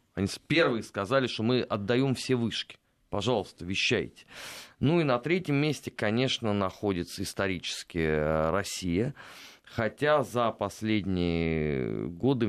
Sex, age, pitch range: male, 30-49, 100-130 Hz